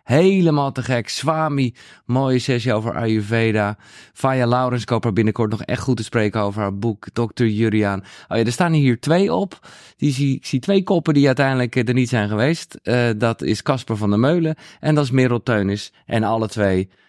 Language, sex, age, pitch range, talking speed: Dutch, male, 20-39, 105-135 Hz, 195 wpm